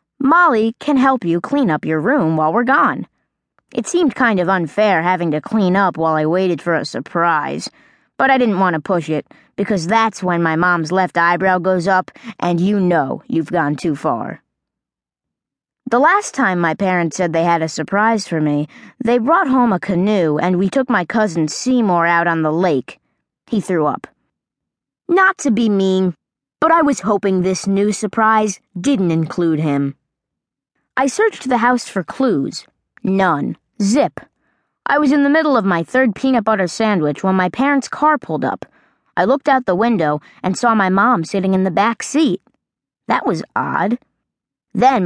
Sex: female